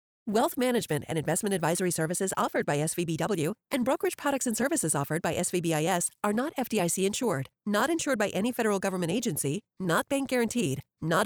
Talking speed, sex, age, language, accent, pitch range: 170 wpm, female, 40-59, English, American, 160-245 Hz